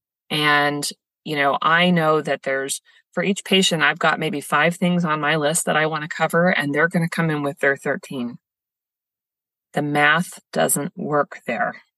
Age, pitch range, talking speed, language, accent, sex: 30-49, 150-190 Hz, 185 wpm, English, American, female